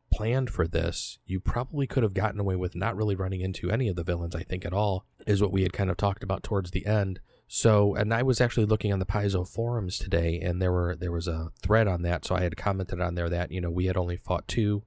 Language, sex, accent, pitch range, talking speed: English, male, American, 90-110 Hz, 270 wpm